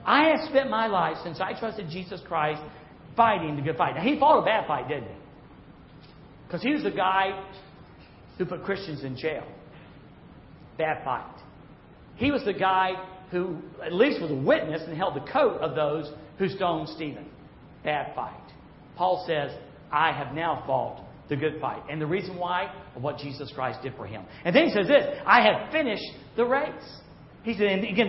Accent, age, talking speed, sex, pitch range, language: American, 50-69, 190 wpm, male, 185-270 Hz, English